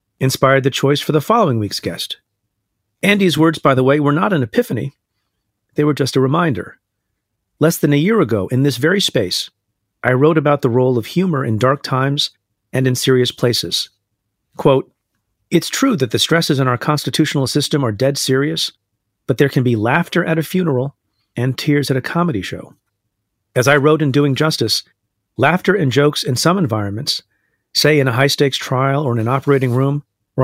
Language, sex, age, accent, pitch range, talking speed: English, male, 40-59, American, 110-150 Hz, 190 wpm